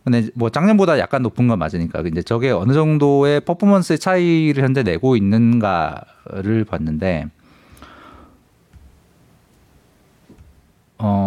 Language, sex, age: Korean, male, 40-59